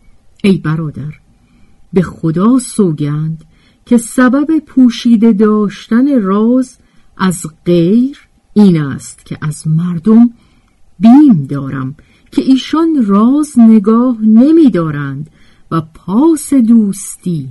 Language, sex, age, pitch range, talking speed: Persian, female, 50-69, 160-250 Hz, 95 wpm